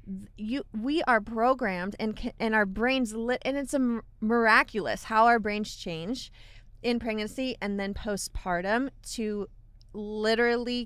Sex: female